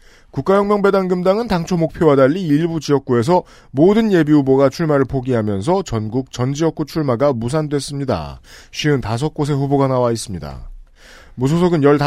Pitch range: 130-170 Hz